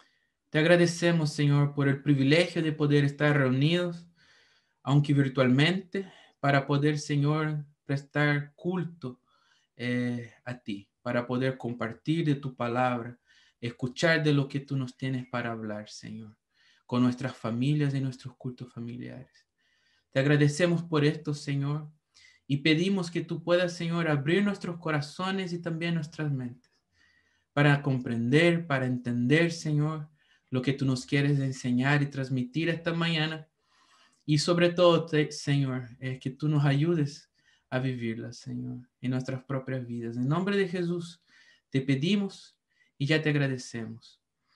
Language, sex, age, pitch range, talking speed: Spanish, male, 20-39, 130-170 Hz, 140 wpm